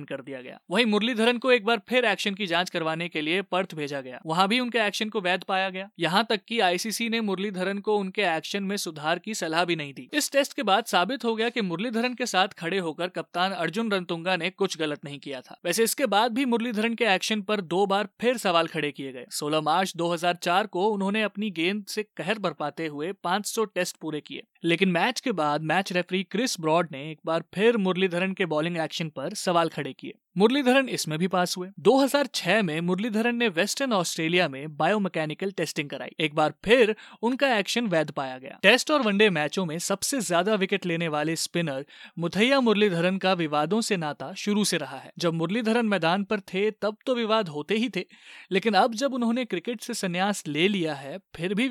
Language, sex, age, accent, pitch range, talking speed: Hindi, male, 30-49, native, 165-220 Hz, 210 wpm